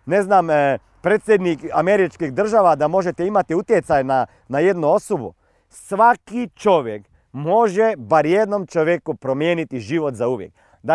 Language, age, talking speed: Croatian, 40-59, 130 wpm